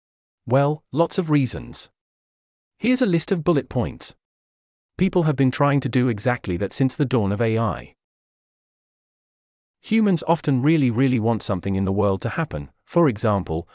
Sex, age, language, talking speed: male, 40-59, English, 155 wpm